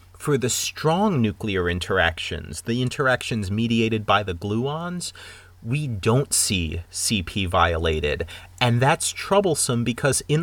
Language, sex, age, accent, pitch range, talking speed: English, male, 30-49, American, 95-135 Hz, 120 wpm